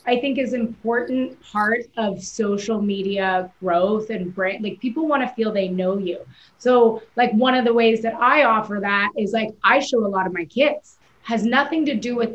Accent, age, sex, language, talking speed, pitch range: American, 30-49, female, English, 205 wpm, 210-275 Hz